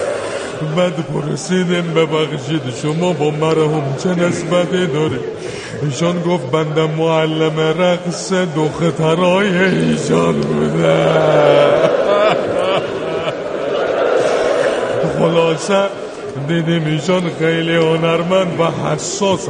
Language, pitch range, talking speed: Persian, 155-200 Hz, 80 wpm